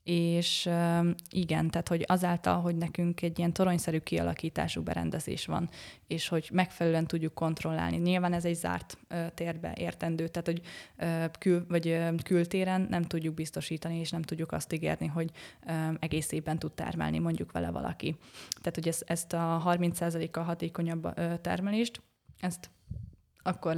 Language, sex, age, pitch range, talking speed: Hungarian, female, 20-39, 165-175 Hz, 130 wpm